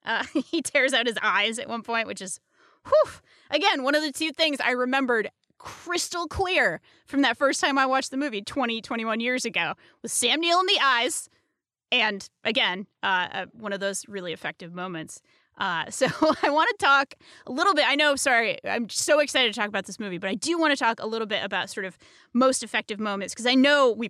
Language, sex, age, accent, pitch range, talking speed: English, female, 20-39, American, 200-265 Hz, 220 wpm